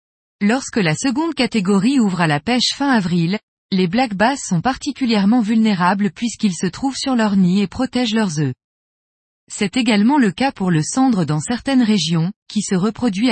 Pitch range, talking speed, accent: 180-245 Hz, 175 wpm, French